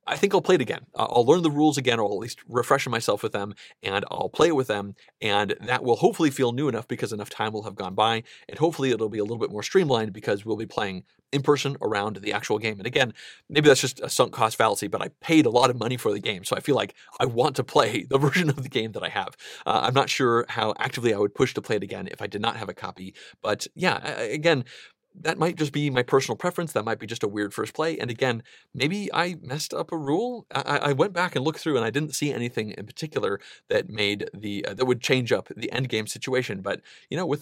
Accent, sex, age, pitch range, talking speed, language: American, male, 30-49, 110-155 Hz, 270 wpm, English